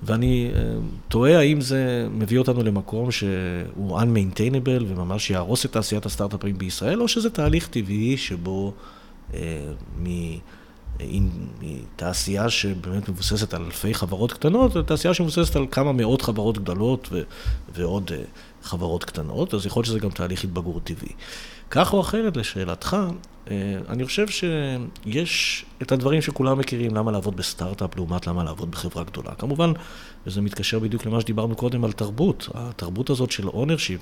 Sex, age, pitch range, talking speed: male, 50-69, 95-135 Hz, 150 wpm